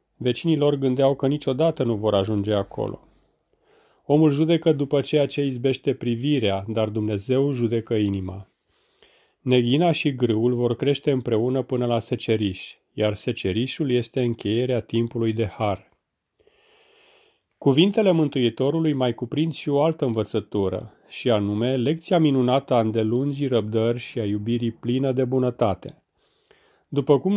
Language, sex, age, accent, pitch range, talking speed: Romanian, male, 40-59, native, 110-140 Hz, 125 wpm